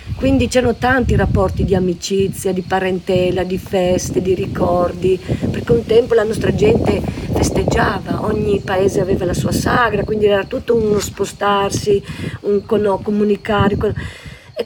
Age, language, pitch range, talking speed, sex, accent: 50-69, Italian, 180-215 Hz, 135 wpm, female, native